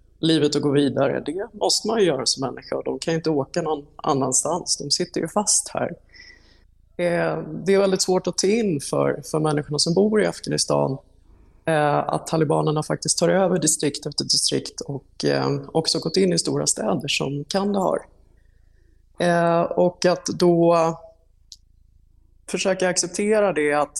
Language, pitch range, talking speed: Swedish, 140-180 Hz, 165 wpm